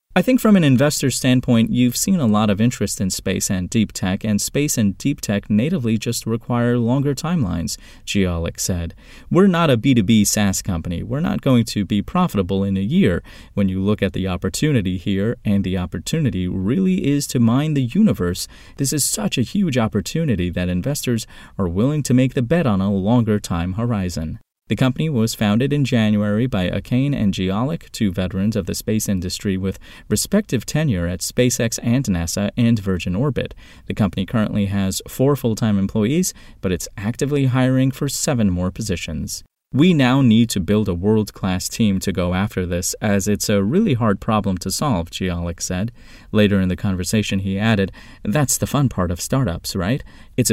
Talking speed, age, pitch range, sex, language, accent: 185 wpm, 30-49, 95-125 Hz, male, English, American